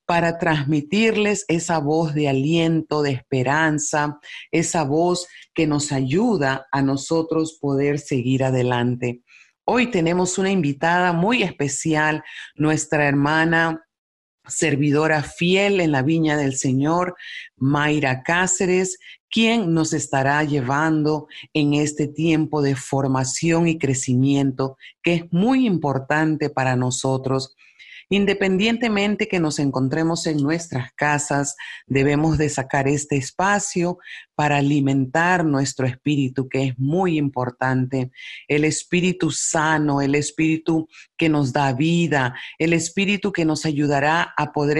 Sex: female